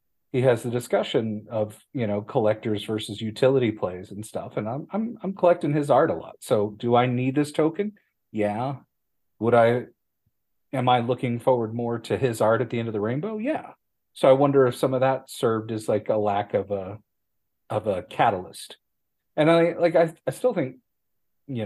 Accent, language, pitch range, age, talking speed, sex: American, English, 105-145 Hz, 40-59, 195 wpm, male